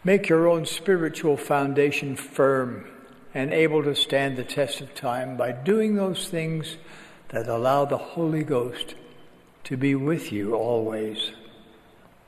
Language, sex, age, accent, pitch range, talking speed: English, male, 60-79, American, 130-165 Hz, 135 wpm